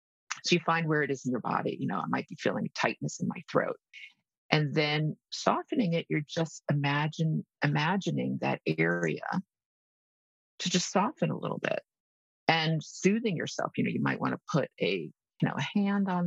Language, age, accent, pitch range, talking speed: English, 50-69, American, 150-185 Hz, 190 wpm